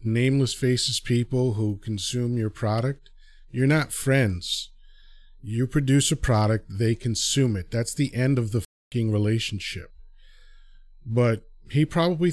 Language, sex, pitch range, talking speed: English, male, 110-140 Hz, 130 wpm